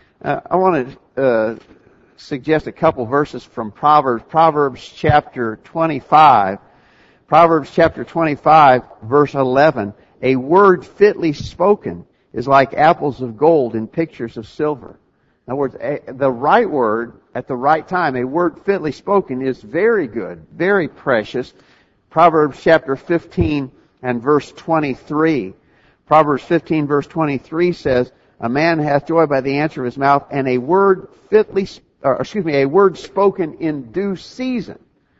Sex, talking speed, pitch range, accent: male, 145 wpm, 130-170 Hz, American